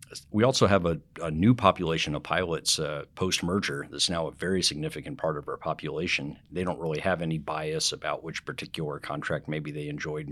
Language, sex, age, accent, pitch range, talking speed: English, male, 50-69, American, 75-95 Hz, 190 wpm